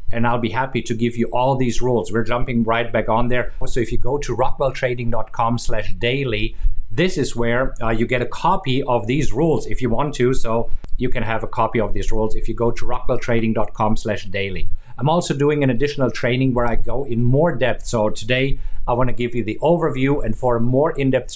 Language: English